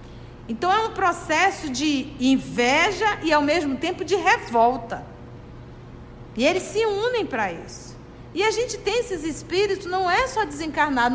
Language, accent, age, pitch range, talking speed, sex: Portuguese, Brazilian, 50-69, 220-340 Hz, 150 wpm, female